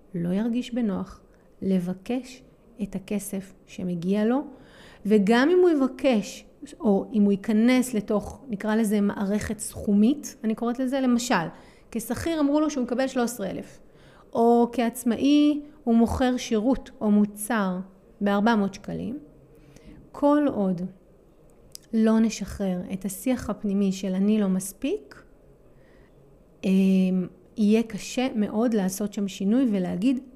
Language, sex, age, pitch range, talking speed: Hebrew, female, 30-49, 195-240 Hz, 115 wpm